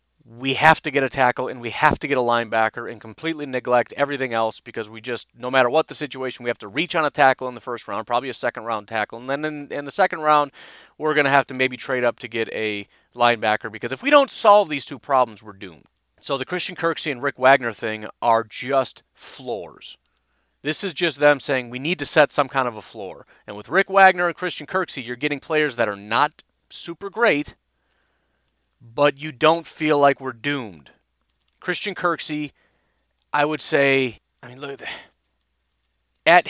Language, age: English, 30-49